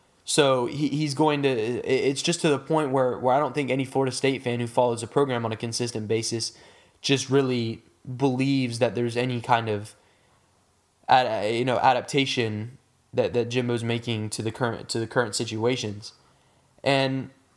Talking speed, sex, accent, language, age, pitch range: 170 wpm, male, American, English, 10-29, 115-160 Hz